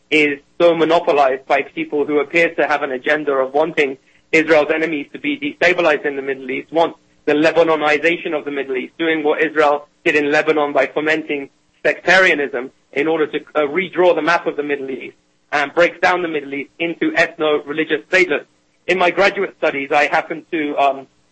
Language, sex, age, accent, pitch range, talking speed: English, male, 30-49, British, 145-170 Hz, 185 wpm